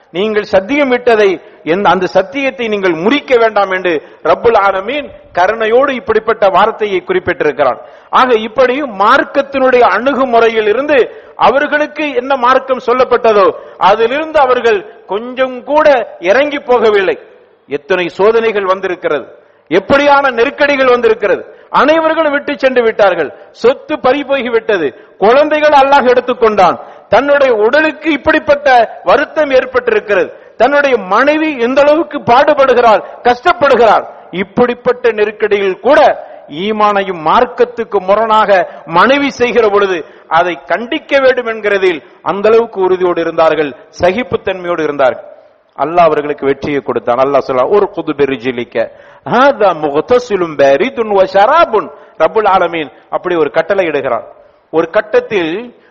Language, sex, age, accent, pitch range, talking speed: English, male, 50-69, Indian, 195-285 Hz, 95 wpm